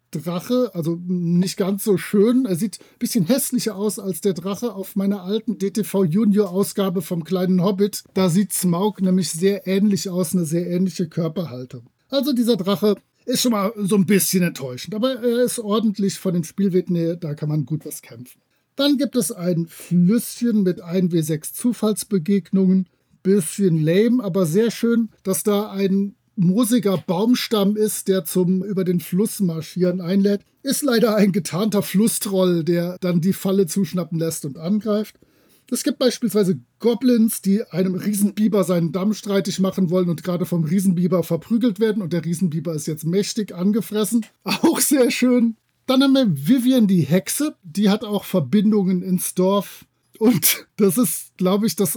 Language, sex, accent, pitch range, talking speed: German, male, German, 180-220 Hz, 165 wpm